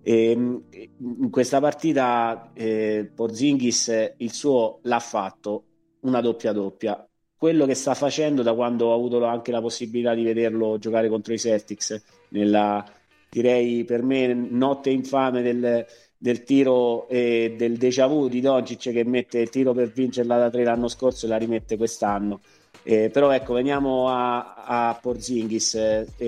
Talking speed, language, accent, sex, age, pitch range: 160 wpm, Italian, native, male, 30-49, 110-125 Hz